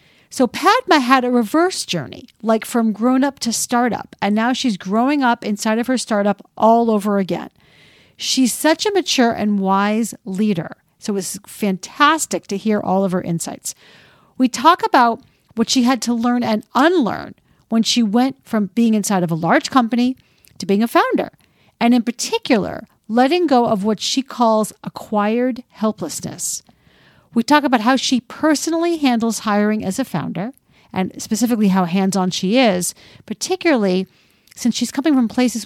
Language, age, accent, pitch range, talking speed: English, 50-69, American, 195-255 Hz, 165 wpm